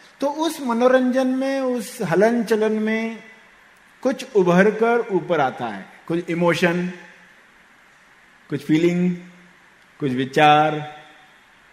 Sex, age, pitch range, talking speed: male, 50-69, 160-225 Hz, 95 wpm